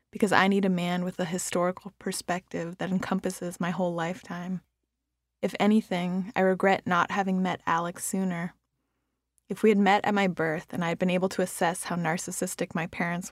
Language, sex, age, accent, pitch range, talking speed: English, female, 20-39, American, 175-200 Hz, 185 wpm